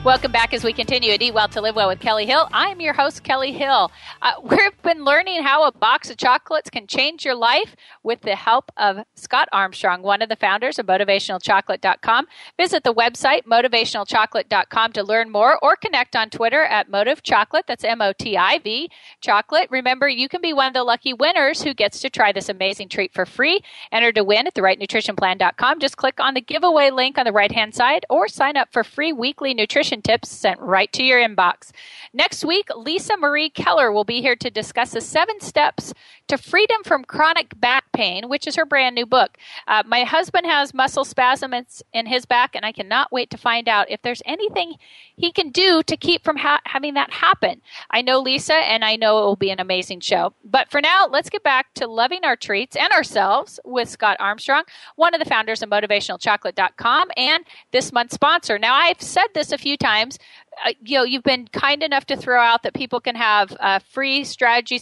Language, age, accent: English, 40-59, American